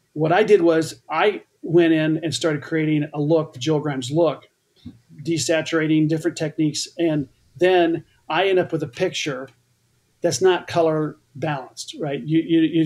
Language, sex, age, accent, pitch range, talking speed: English, male, 40-59, American, 150-180 Hz, 165 wpm